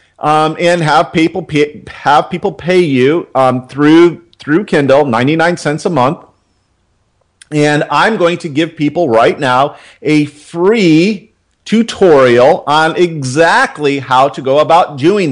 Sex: male